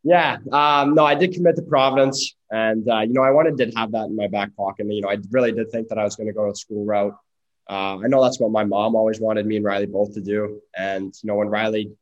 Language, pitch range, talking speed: English, 100-110 Hz, 285 wpm